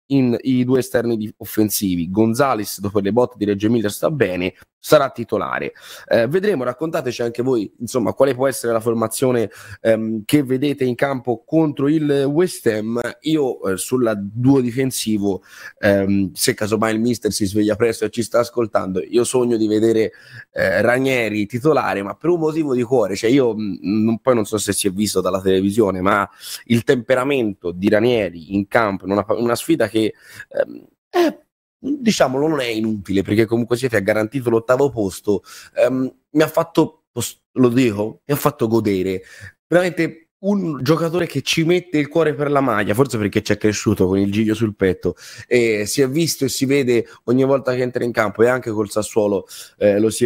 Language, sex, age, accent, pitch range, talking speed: Italian, male, 20-39, native, 105-135 Hz, 185 wpm